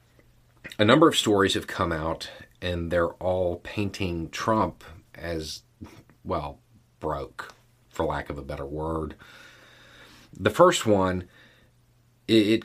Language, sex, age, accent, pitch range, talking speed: English, male, 40-59, American, 80-115 Hz, 120 wpm